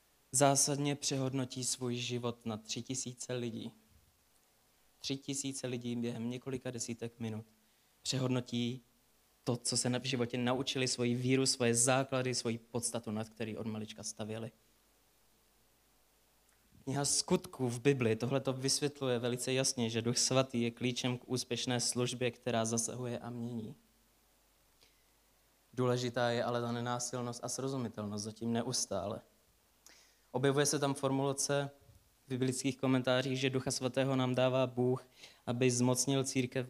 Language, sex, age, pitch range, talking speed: Czech, male, 20-39, 115-130 Hz, 130 wpm